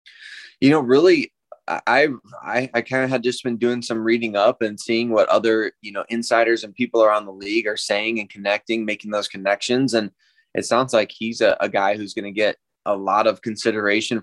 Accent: American